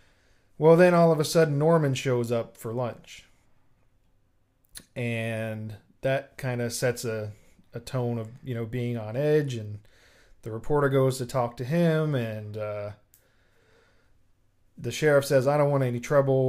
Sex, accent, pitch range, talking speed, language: male, American, 110-135 Hz, 155 wpm, English